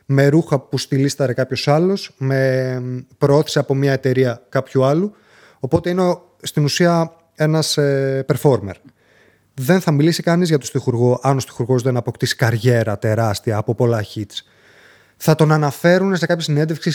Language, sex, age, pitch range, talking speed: Greek, male, 30-49, 125-155 Hz, 150 wpm